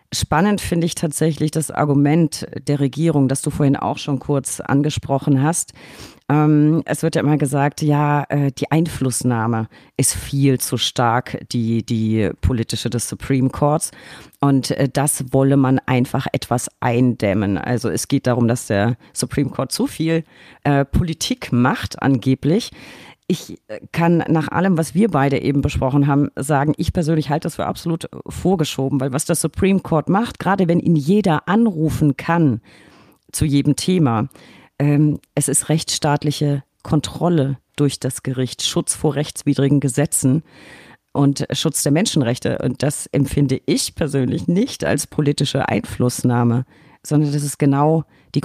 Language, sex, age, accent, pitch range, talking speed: German, female, 40-59, German, 130-160 Hz, 145 wpm